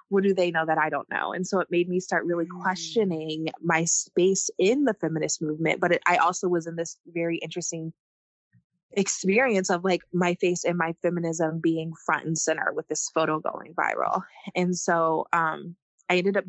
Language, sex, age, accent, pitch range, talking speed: English, female, 20-39, American, 160-185 Hz, 195 wpm